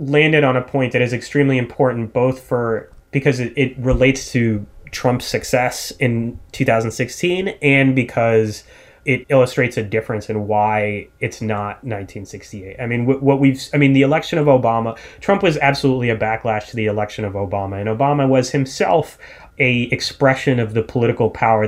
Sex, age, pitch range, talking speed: male, 30-49, 110-135 Hz, 165 wpm